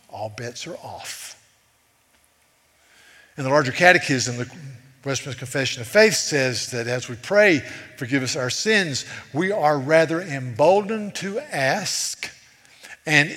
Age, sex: 50-69, male